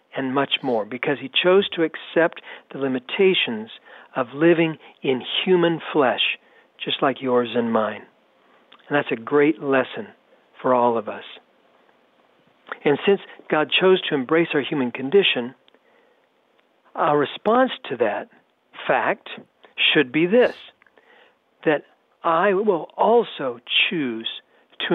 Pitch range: 135-185 Hz